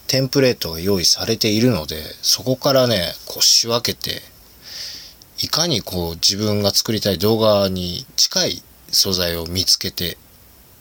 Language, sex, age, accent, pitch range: Japanese, male, 20-39, native, 90-125 Hz